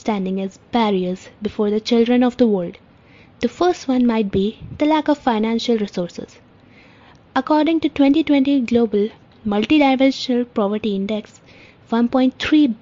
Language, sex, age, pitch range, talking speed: English, female, 20-39, 205-250 Hz, 125 wpm